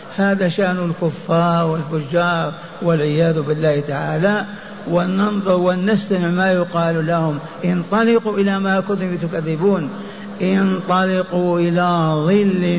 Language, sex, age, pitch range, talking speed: Arabic, male, 60-79, 175-205 Hz, 95 wpm